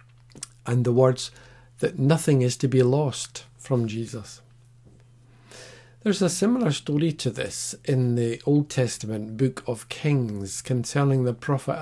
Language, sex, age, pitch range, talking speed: English, male, 50-69, 120-140 Hz, 135 wpm